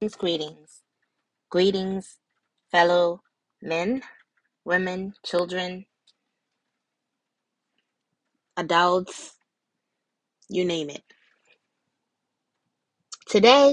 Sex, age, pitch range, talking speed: female, 20-39, 175-240 Hz, 50 wpm